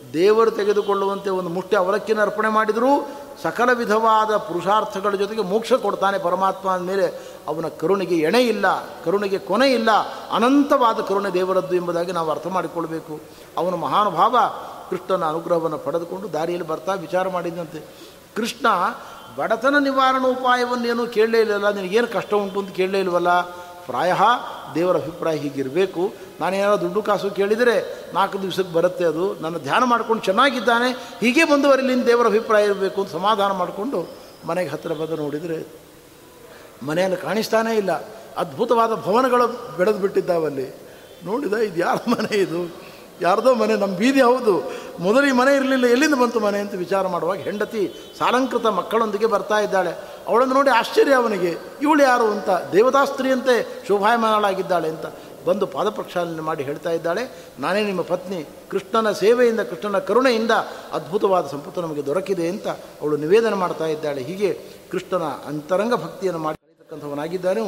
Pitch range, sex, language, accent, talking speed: 175-235 Hz, male, Kannada, native, 130 wpm